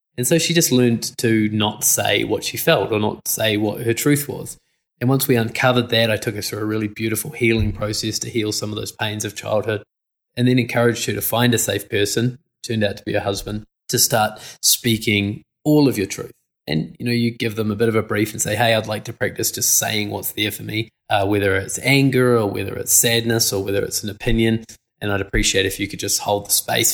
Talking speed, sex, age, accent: 245 wpm, male, 20-39, Australian